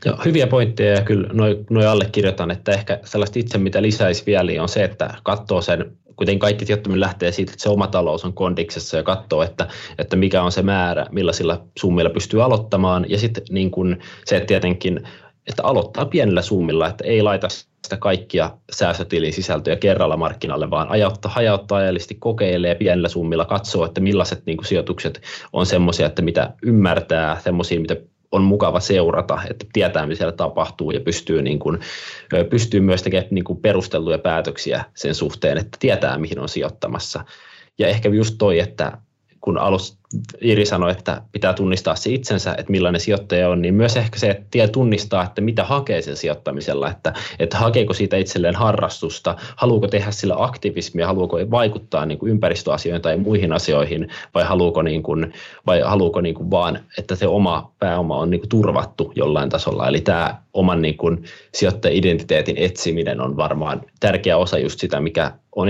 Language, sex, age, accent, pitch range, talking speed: Finnish, male, 20-39, native, 90-105 Hz, 170 wpm